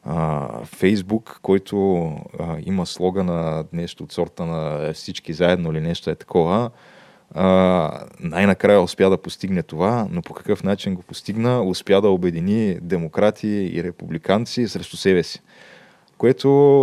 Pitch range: 85-105 Hz